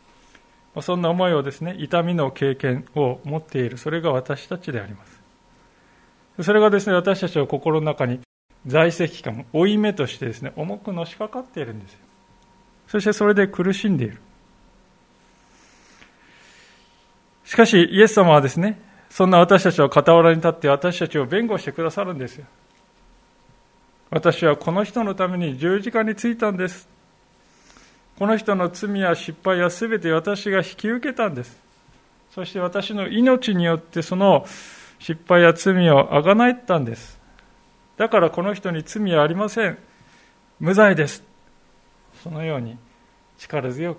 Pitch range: 150-200 Hz